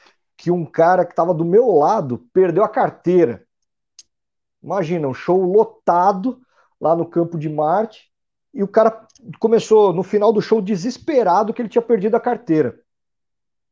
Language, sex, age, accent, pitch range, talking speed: Portuguese, male, 50-69, Brazilian, 160-210 Hz, 155 wpm